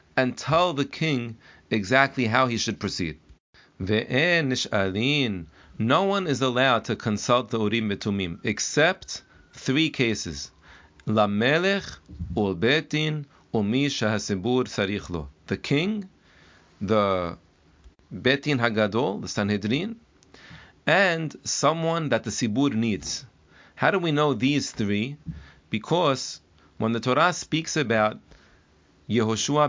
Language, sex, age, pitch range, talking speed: English, male, 40-59, 100-135 Hz, 105 wpm